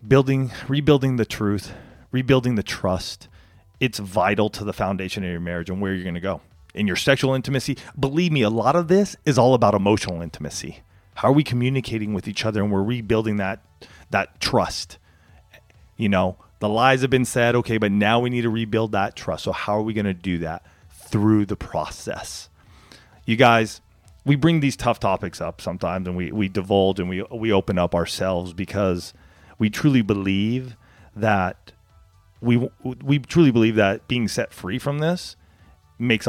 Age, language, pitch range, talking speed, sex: 30-49, English, 95-120 Hz, 185 wpm, male